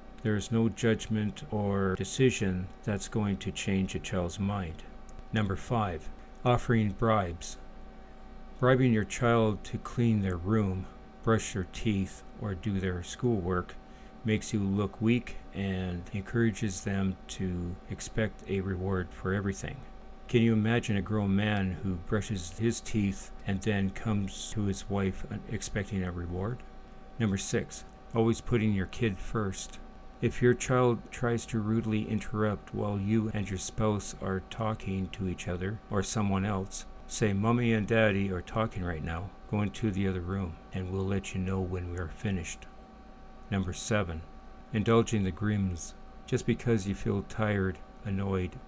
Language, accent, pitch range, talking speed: English, American, 95-110 Hz, 150 wpm